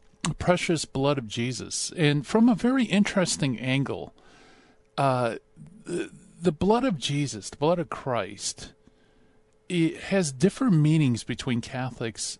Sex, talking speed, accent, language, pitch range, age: male, 125 wpm, American, English, 115-170 Hz, 40-59